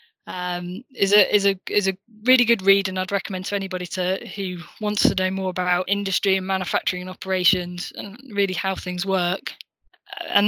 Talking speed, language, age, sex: 190 wpm, English, 10-29, female